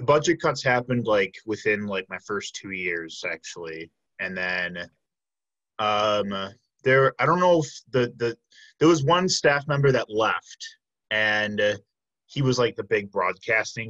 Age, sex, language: 20-39, male, English